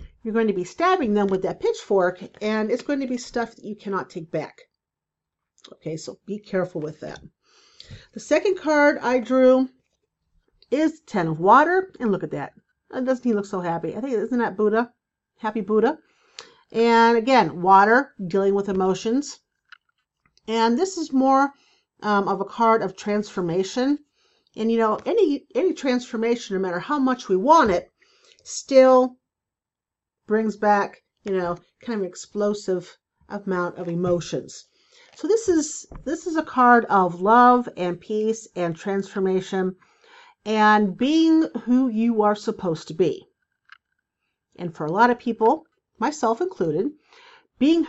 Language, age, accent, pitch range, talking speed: English, 50-69, American, 195-290 Hz, 155 wpm